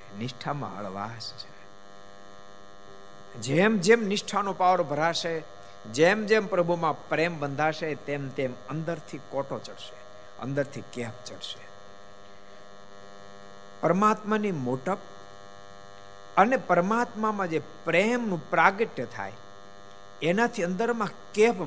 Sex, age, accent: male, 60-79, native